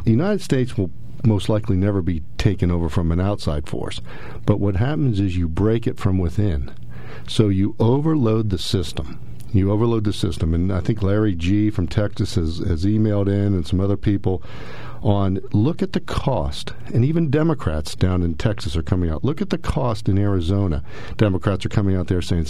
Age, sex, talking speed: 50-69, male, 195 wpm